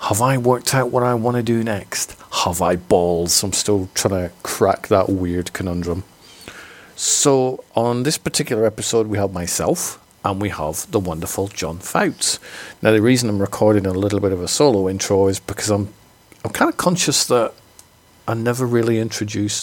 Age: 40-59